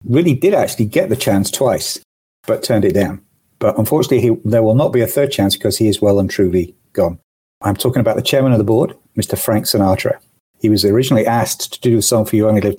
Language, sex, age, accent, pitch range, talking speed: English, male, 50-69, British, 105-130 Hz, 240 wpm